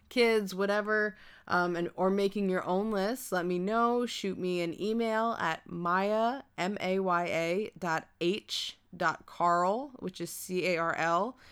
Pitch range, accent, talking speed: 160-185 Hz, American, 150 wpm